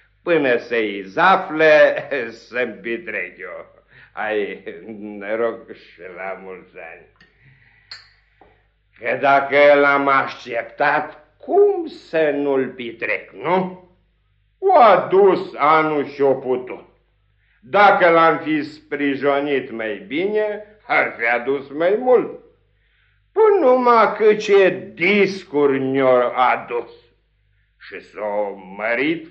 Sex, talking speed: male, 95 wpm